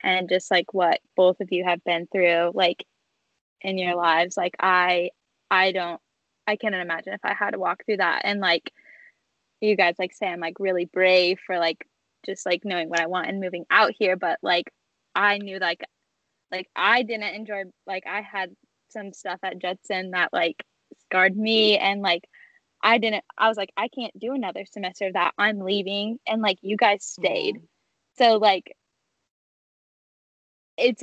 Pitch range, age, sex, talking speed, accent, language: 185-220 Hz, 10-29, female, 190 wpm, American, English